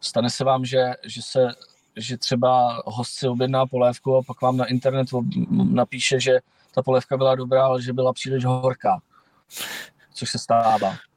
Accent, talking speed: native, 165 wpm